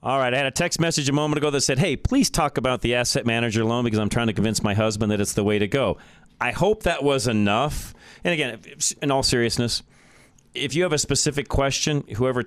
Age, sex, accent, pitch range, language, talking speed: 40-59, male, American, 100-125 Hz, English, 240 wpm